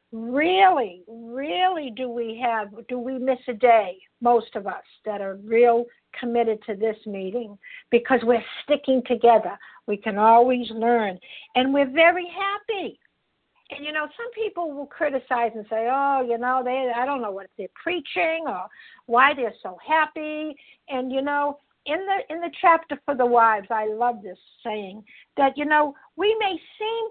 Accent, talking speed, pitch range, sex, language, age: American, 170 wpm, 235-320 Hz, female, English, 60-79